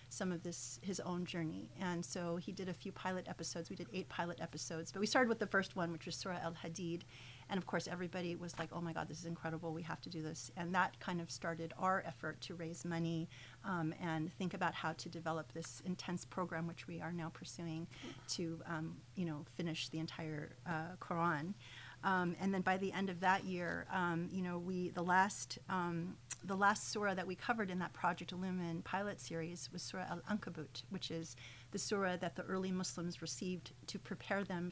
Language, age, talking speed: English, 40-59, 215 wpm